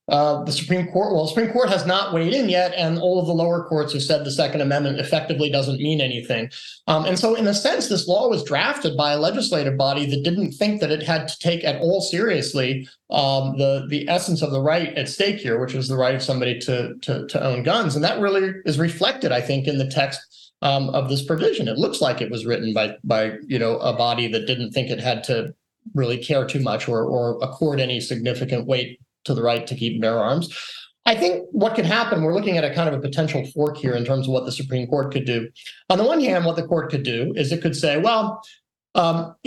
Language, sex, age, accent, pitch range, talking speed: English, male, 30-49, American, 130-170 Hz, 245 wpm